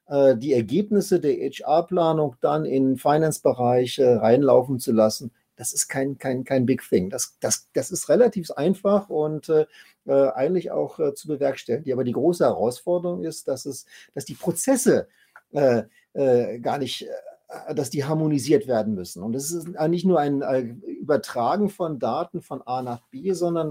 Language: German